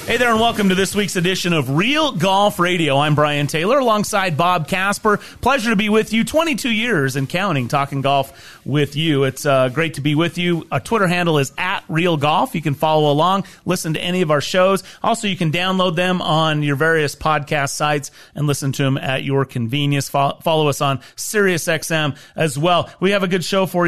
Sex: male